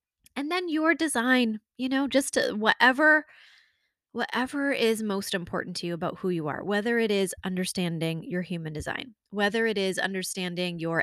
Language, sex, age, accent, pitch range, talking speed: English, female, 20-39, American, 185-255 Hz, 165 wpm